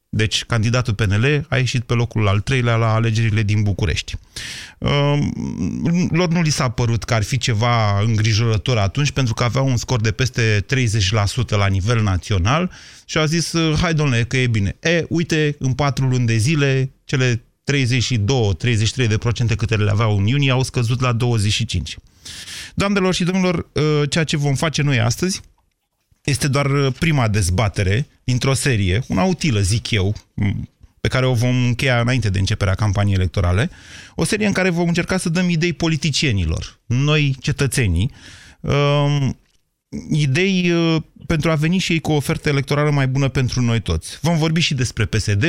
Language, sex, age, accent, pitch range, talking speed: Romanian, male, 30-49, native, 110-145 Hz, 165 wpm